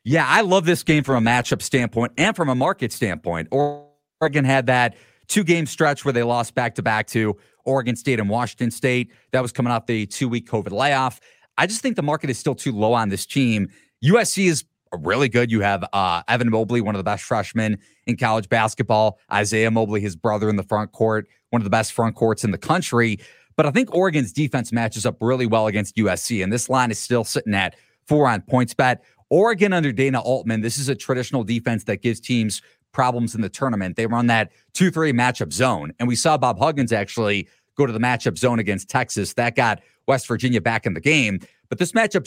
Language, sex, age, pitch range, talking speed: English, male, 30-49, 110-140 Hz, 220 wpm